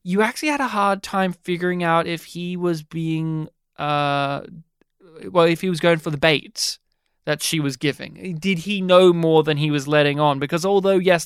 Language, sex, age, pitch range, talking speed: English, male, 20-39, 150-180 Hz, 195 wpm